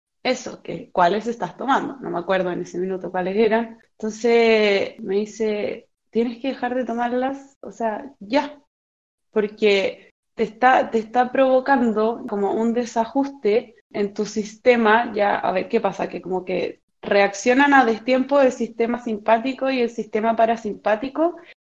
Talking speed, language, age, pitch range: 145 wpm, Spanish, 20-39, 205-255 Hz